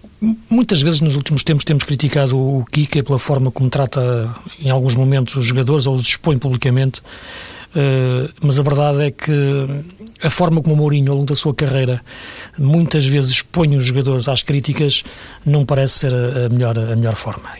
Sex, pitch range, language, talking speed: male, 125-150 Hz, Portuguese, 175 wpm